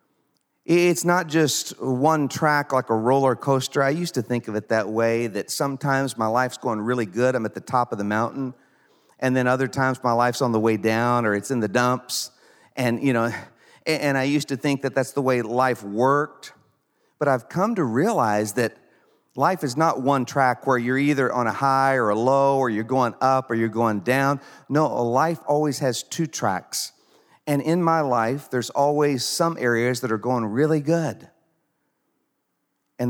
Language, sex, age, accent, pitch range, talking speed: English, male, 40-59, American, 115-140 Hz, 195 wpm